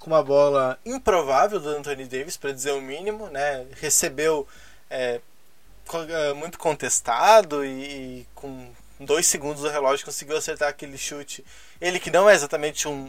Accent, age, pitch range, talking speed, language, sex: Brazilian, 20-39, 145-195 Hz, 150 wpm, Portuguese, male